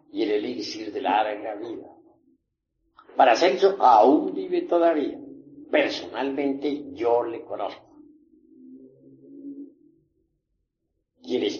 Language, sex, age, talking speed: Spanish, male, 60-79, 85 wpm